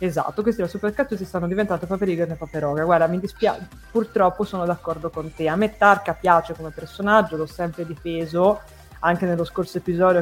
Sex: female